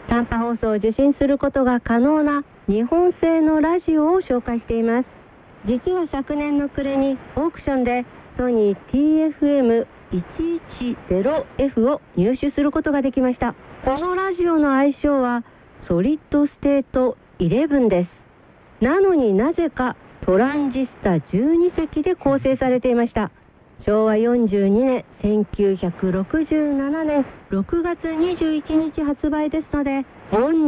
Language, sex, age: Korean, female, 50-69